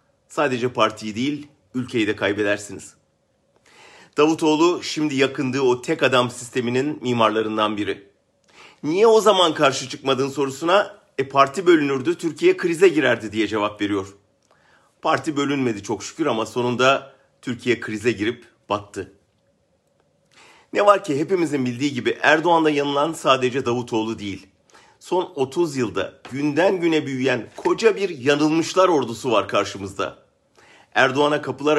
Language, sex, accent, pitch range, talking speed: German, male, Turkish, 125-155 Hz, 125 wpm